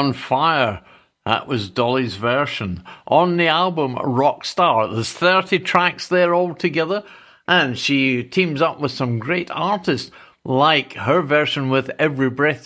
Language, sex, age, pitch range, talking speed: English, male, 60-79, 135-185 Hz, 140 wpm